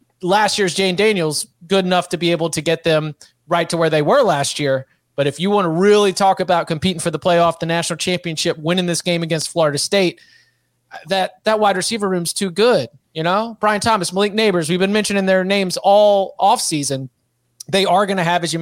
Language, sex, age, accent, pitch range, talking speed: English, male, 30-49, American, 150-185 Hz, 215 wpm